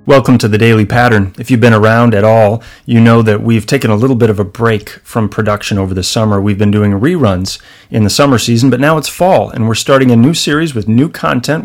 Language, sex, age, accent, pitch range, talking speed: English, male, 30-49, American, 105-130 Hz, 245 wpm